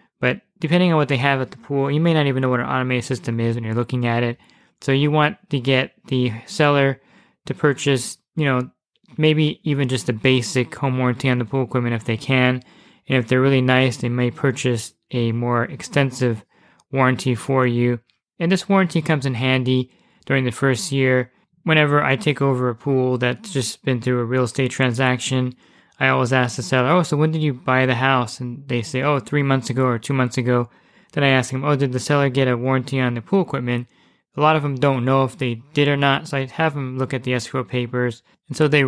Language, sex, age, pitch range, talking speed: English, male, 20-39, 125-140 Hz, 230 wpm